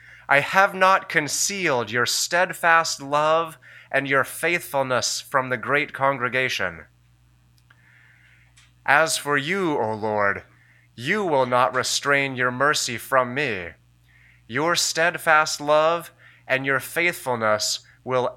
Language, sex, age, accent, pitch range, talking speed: English, male, 30-49, American, 110-165 Hz, 110 wpm